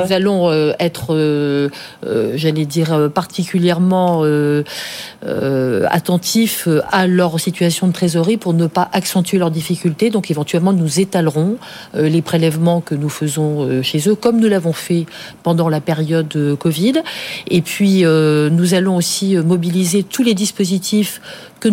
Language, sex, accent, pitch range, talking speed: French, female, French, 160-185 Hz, 145 wpm